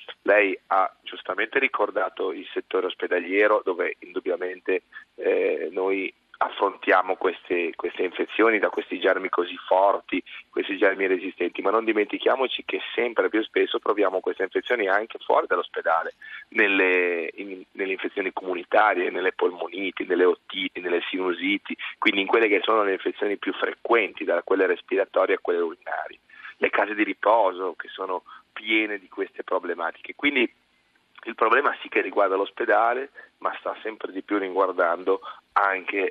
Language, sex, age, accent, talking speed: Italian, male, 40-59, native, 145 wpm